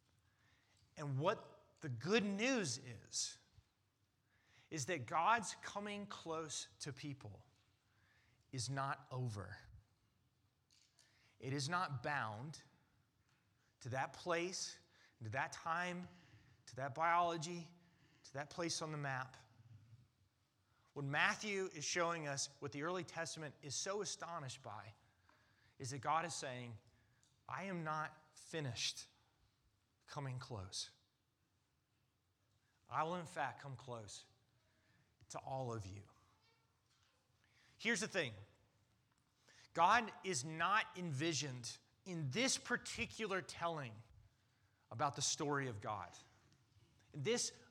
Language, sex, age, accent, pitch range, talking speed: English, male, 30-49, American, 110-160 Hz, 110 wpm